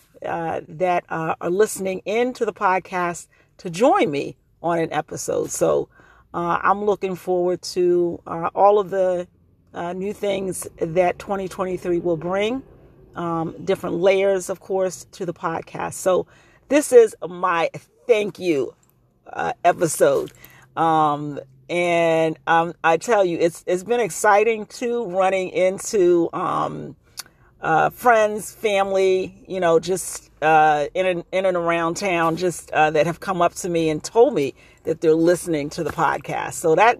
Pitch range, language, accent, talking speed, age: 160-205 Hz, English, American, 155 wpm, 40-59